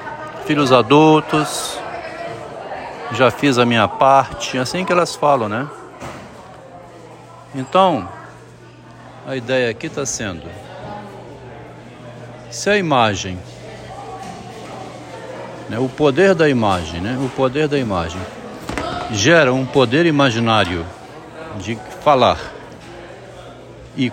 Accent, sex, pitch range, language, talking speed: Brazilian, male, 115-145 Hz, Portuguese, 95 wpm